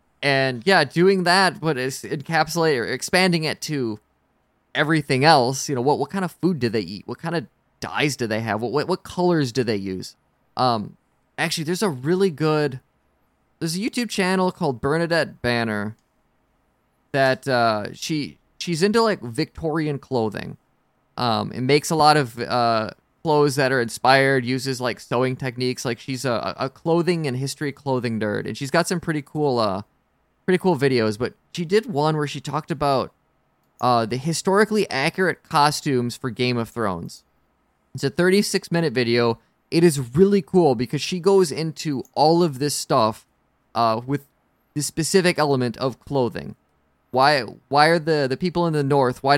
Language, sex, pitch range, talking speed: English, male, 120-160 Hz, 175 wpm